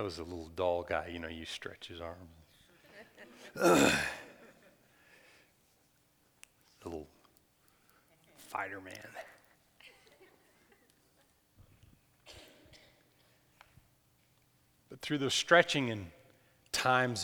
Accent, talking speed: American, 80 wpm